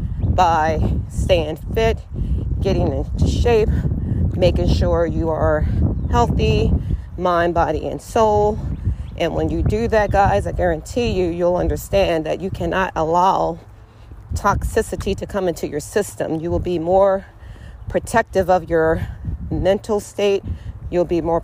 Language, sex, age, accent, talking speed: English, female, 40-59, American, 135 wpm